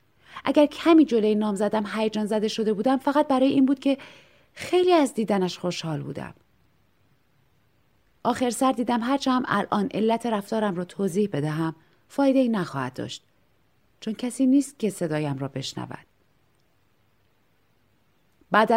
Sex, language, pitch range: female, Persian, 175-230 Hz